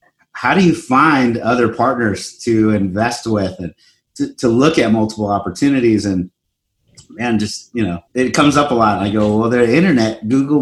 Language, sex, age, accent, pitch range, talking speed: English, male, 30-49, American, 110-140 Hz, 190 wpm